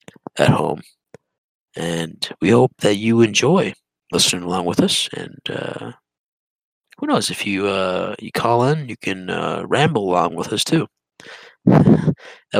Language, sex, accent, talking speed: English, male, American, 150 wpm